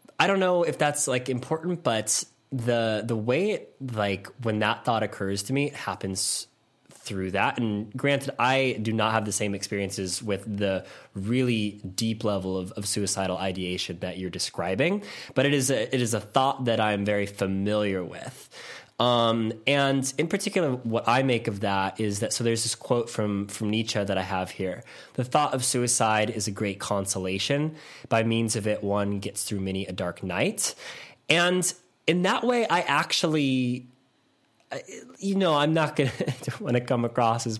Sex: male